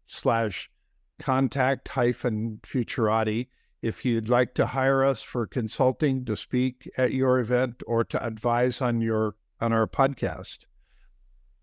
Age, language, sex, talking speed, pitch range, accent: 60-79, English, male, 130 wpm, 110-135 Hz, American